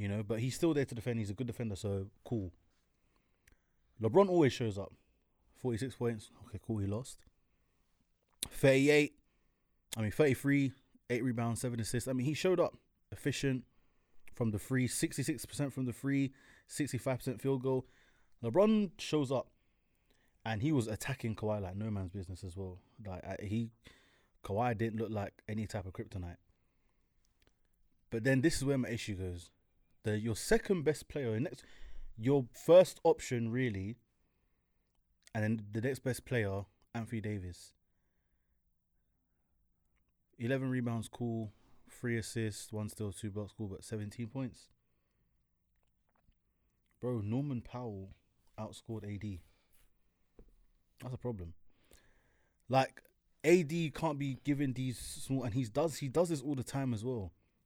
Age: 20-39